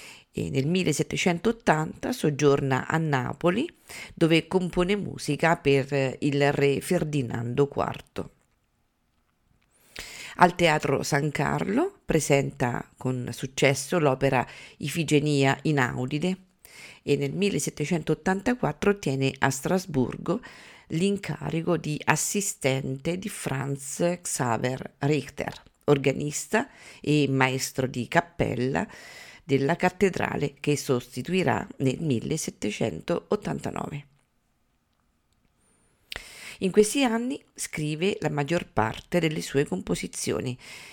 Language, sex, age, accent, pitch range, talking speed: Italian, female, 50-69, native, 140-180 Hz, 85 wpm